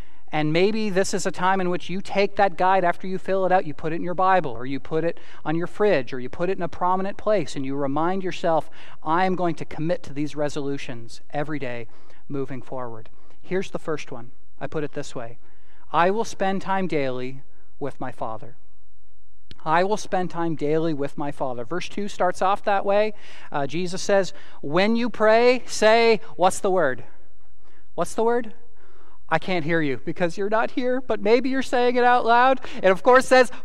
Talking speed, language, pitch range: 210 wpm, English, 155-230 Hz